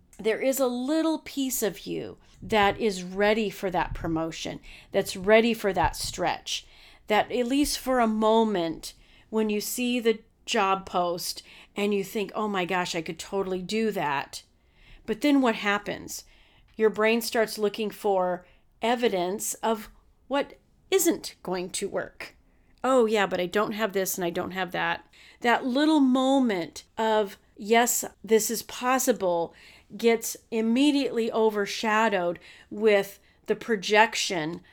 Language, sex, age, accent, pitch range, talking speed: English, female, 40-59, American, 195-235 Hz, 145 wpm